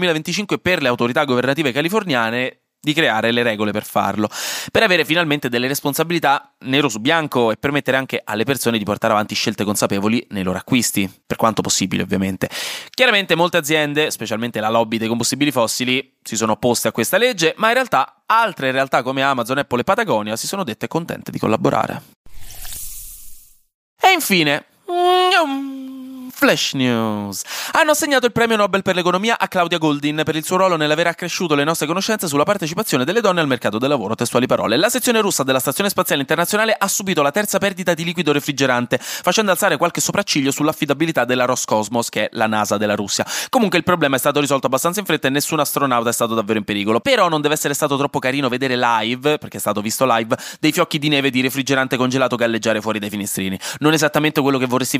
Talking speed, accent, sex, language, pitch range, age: 190 wpm, native, male, Italian, 120-175 Hz, 20-39